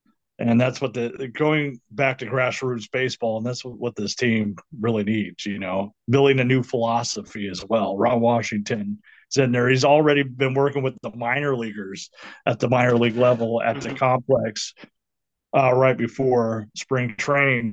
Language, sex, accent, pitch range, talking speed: English, male, American, 115-135 Hz, 170 wpm